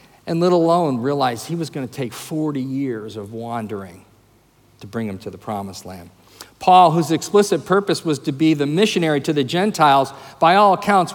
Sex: male